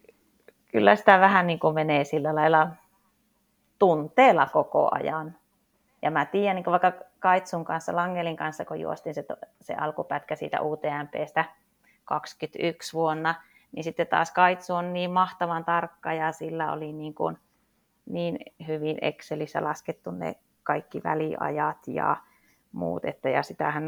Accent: native